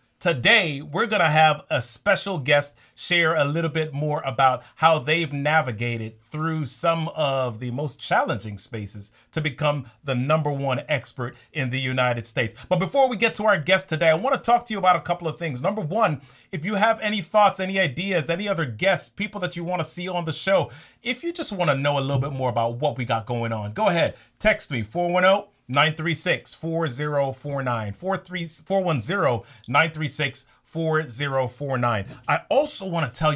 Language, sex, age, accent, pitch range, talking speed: English, male, 30-49, American, 125-170 Hz, 180 wpm